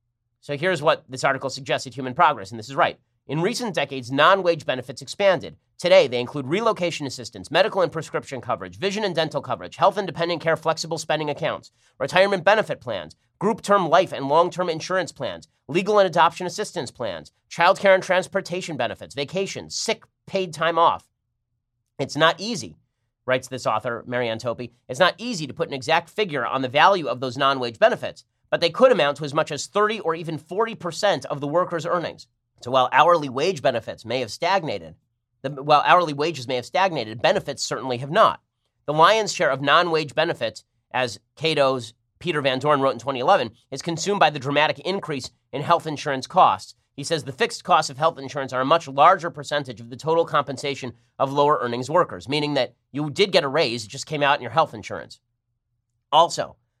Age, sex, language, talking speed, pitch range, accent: 30-49, male, English, 190 wpm, 125-170 Hz, American